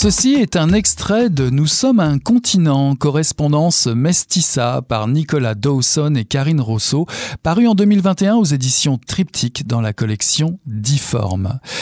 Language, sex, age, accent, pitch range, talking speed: French, male, 50-69, French, 120-165 Hz, 145 wpm